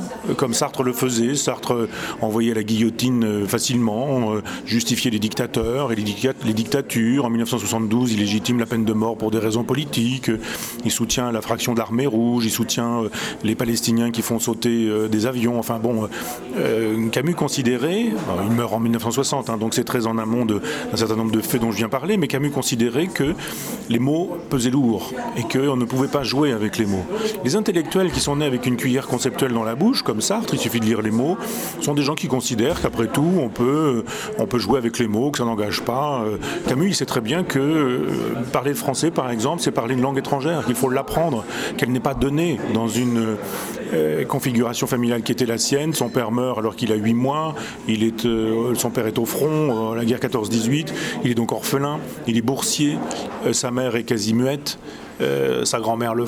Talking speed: 205 wpm